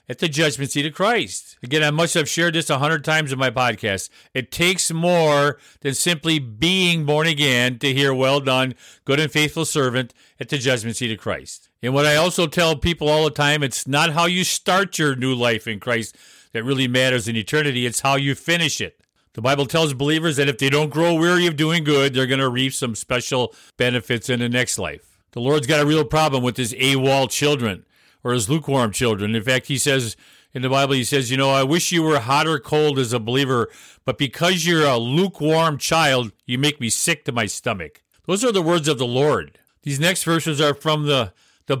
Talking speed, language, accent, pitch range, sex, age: 220 wpm, English, American, 130-155 Hz, male, 50-69